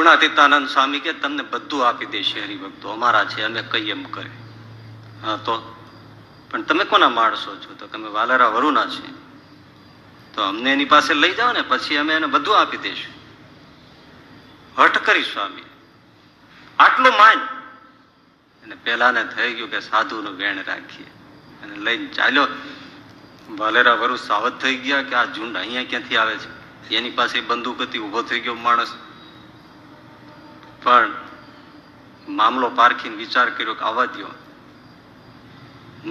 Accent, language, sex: native, Gujarati, male